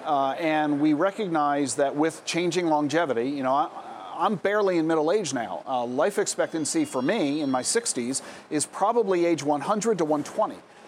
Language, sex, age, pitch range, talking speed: English, male, 40-59, 145-190 Hz, 165 wpm